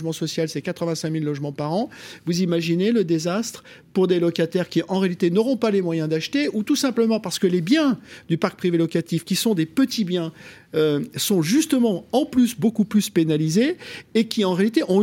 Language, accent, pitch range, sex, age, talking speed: French, French, 170-240 Hz, male, 50-69, 205 wpm